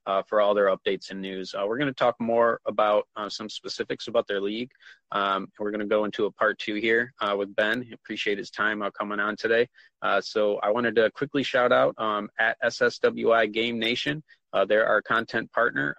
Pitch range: 100-115 Hz